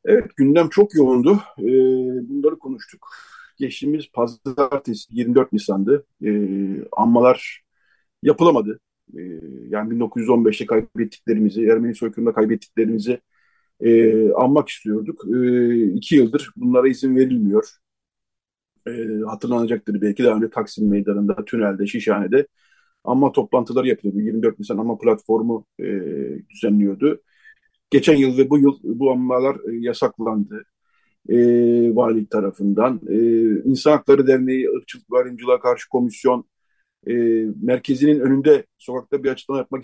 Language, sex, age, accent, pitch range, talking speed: Turkish, male, 50-69, native, 110-145 Hz, 115 wpm